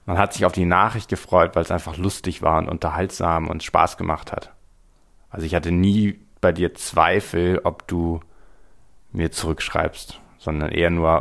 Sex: male